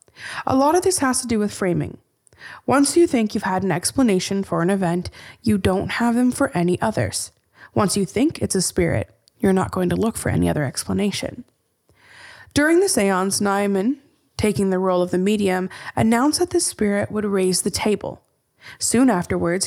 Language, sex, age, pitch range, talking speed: English, female, 20-39, 185-250 Hz, 185 wpm